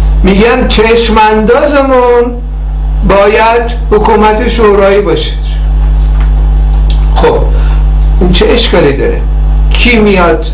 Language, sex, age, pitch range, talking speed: Persian, male, 60-79, 155-215 Hz, 75 wpm